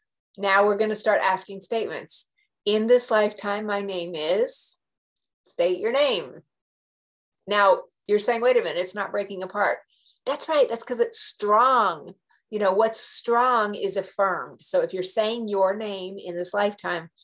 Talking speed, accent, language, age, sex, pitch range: 160 wpm, American, English, 50-69, female, 180-220 Hz